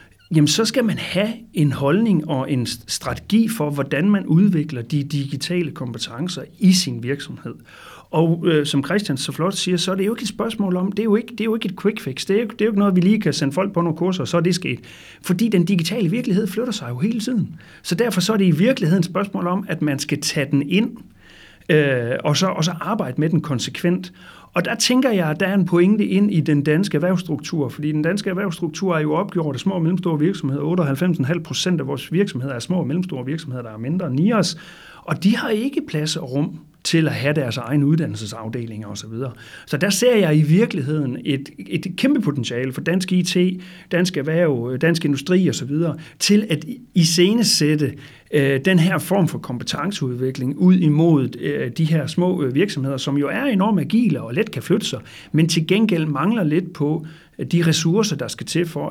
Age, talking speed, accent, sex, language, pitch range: 40-59, 225 wpm, native, male, Danish, 145-190 Hz